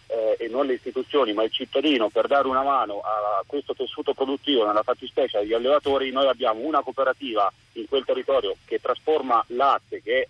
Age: 40-59